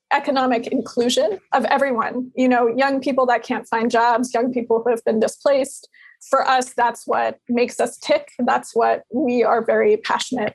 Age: 20-39